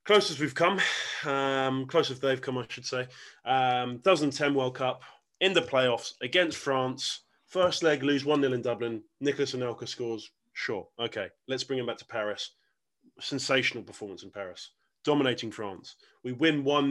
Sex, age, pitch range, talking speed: male, 20-39, 120-150 Hz, 155 wpm